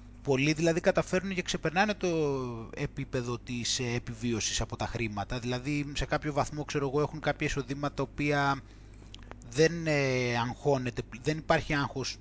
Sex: male